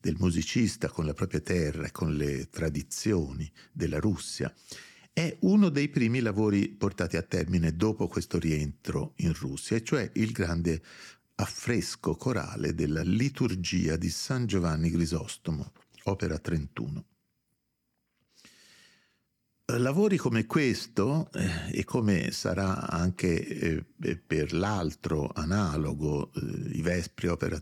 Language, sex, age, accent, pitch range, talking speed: Italian, male, 50-69, native, 80-105 Hz, 110 wpm